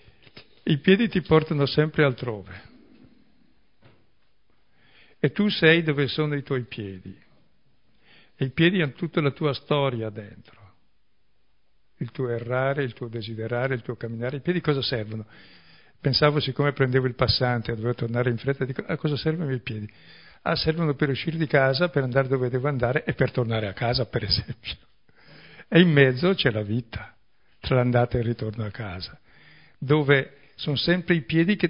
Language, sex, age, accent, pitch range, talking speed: Italian, male, 60-79, native, 120-150 Hz, 170 wpm